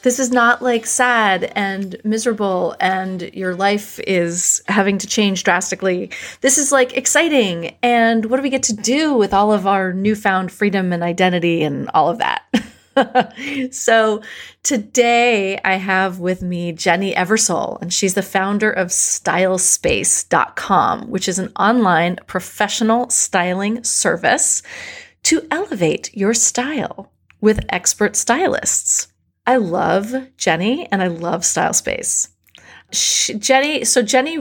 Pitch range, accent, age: 190-245 Hz, American, 30-49